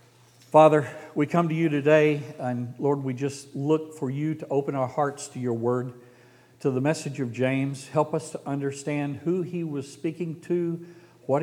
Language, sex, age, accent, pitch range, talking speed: English, male, 50-69, American, 125-155 Hz, 185 wpm